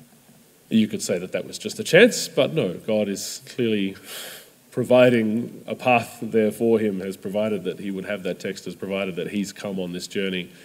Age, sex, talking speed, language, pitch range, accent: 30-49, male, 205 wpm, English, 100-125 Hz, Australian